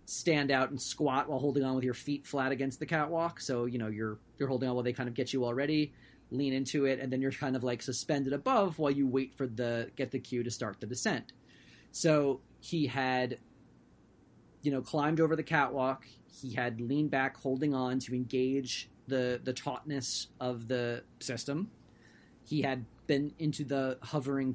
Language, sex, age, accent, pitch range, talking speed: English, male, 30-49, American, 125-145 Hz, 195 wpm